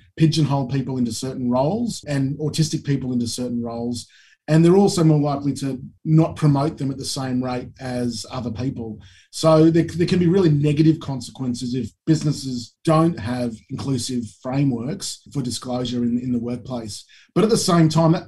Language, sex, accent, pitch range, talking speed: English, male, Australian, 130-160 Hz, 175 wpm